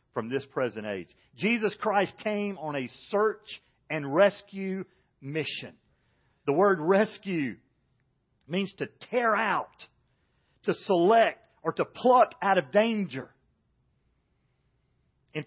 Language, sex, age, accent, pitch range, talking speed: English, male, 40-59, American, 145-215 Hz, 115 wpm